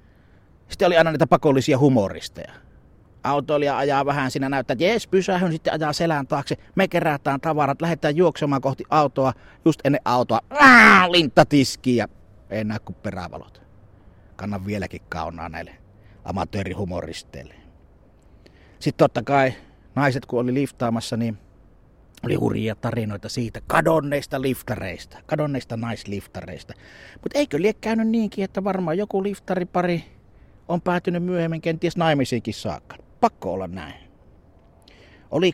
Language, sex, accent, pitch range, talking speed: Finnish, male, native, 100-150 Hz, 125 wpm